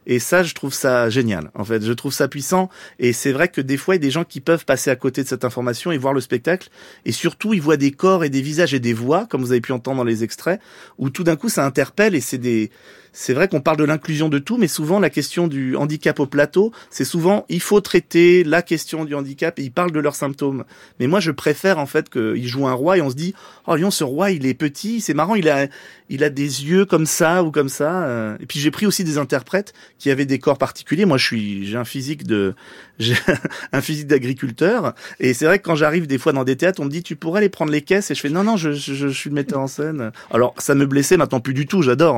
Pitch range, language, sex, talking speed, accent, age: 130-170 Hz, French, male, 275 wpm, French, 30-49